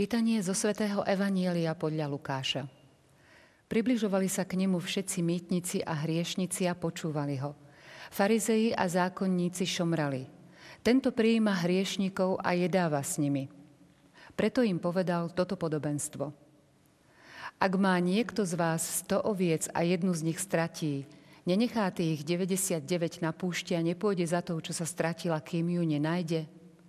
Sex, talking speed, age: female, 130 wpm, 50-69